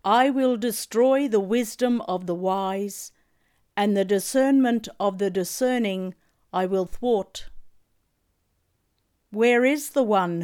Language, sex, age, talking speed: English, female, 50-69, 120 wpm